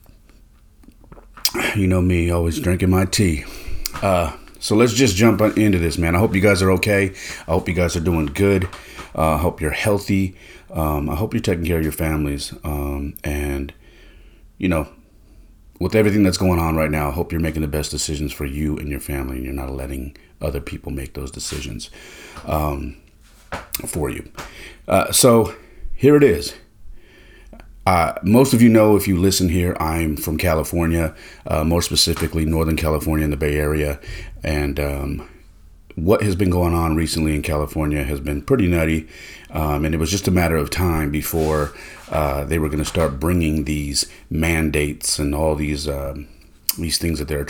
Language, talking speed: English, 180 wpm